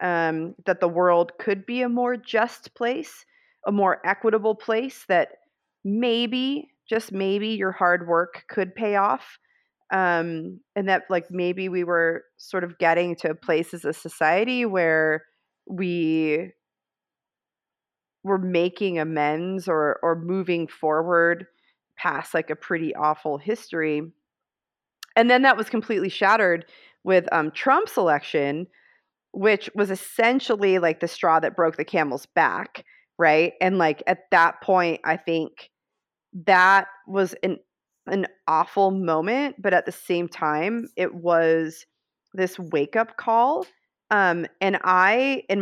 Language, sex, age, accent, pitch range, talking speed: English, female, 30-49, American, 165-210 Hz, 135 wpm